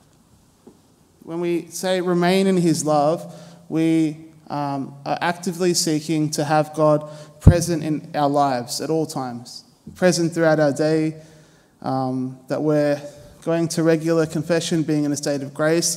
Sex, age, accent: male, 20-39, Australian